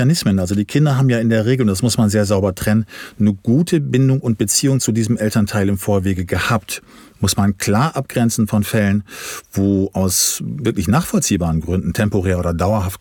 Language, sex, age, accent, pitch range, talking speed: German, male, 40-59, German, 100-130 Hz, 180 wpm